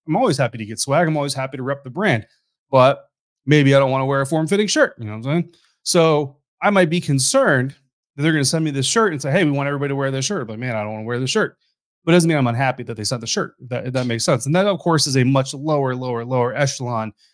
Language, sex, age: English, male, 30-49